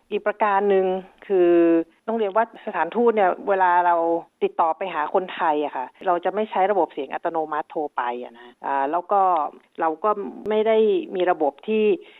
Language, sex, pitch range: Thai, female, 155-195 Hz